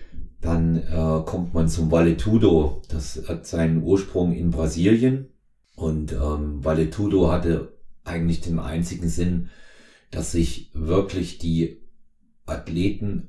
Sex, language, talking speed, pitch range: male, German, 115 wpm, 80-90 Hz